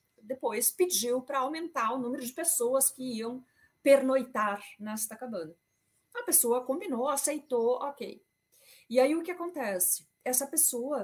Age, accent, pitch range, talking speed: 40-59, Brazilian, 200-265 Hz, 135 wpm